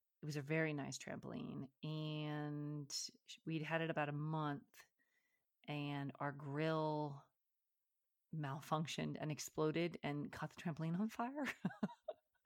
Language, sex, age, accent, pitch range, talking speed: English, female, 30-49, American, 145-165 Hz, 120 wpm